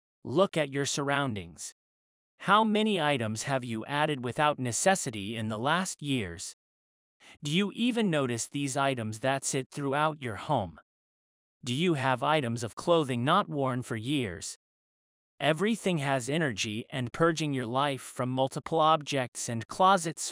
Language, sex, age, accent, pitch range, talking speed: English, male, 30-49, American, 115-155 Hz, 145 wpm